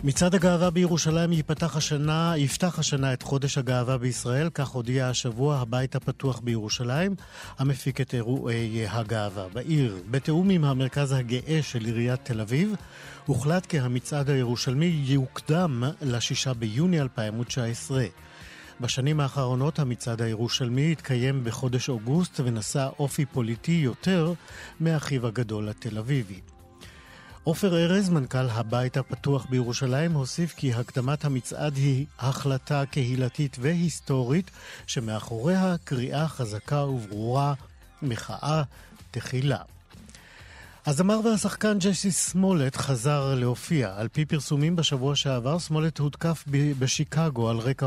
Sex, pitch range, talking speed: male, 125-155 Hz, 115 wpm